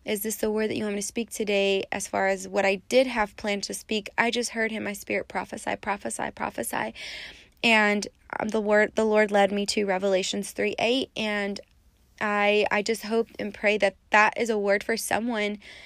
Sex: female